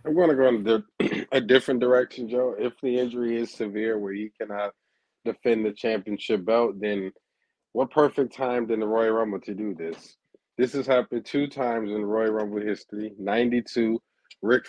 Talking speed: 175 wpm